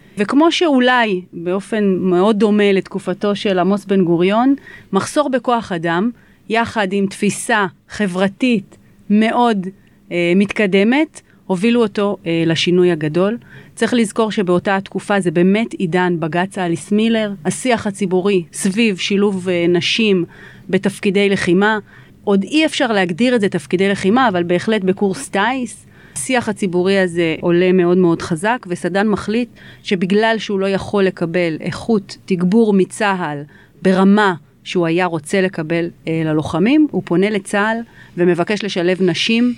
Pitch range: 175-210 Hz